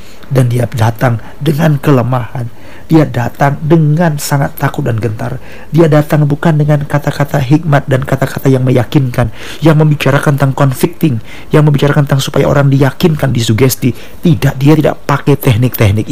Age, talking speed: 50-69, 145 wpm